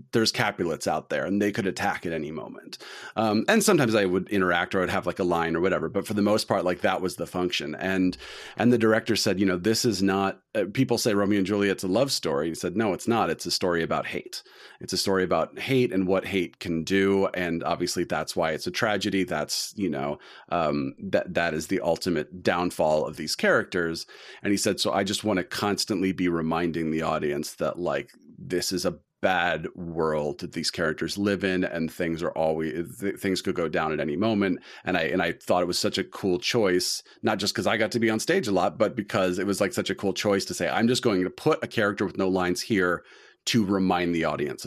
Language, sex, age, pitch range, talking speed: English, male, 30-49, 90-100 Hz, 240 wpm